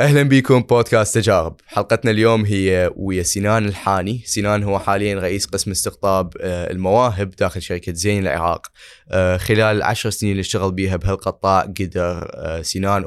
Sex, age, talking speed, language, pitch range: male, 20-39, 140 wpm, Arabic, 90-105 Hz